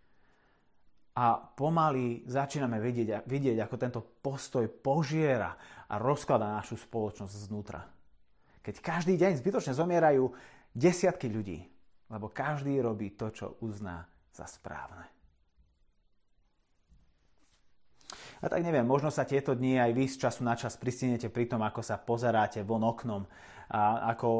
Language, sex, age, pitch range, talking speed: Slovak, male, 30-49, 115-155 Hz, 130 wpm